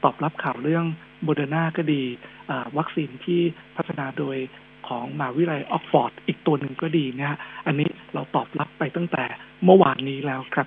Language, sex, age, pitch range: Thai, male, 60-79, 140-170 Hz